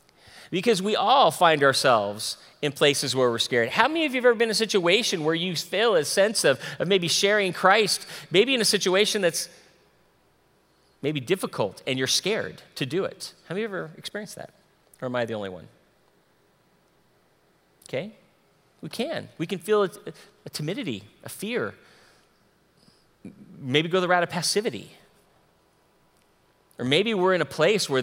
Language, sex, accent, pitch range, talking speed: English, male, American, 135-195 Hz, 170 wpm